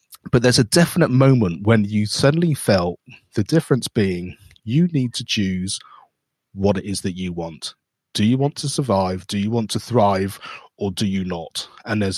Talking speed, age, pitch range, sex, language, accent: 185 wpm, 30-49, 95-120 Hz, male, English, British